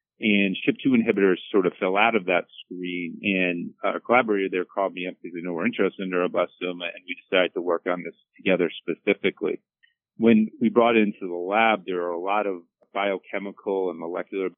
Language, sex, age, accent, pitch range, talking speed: English, male, 30-49, American, 90-100 Hz, 200 wpm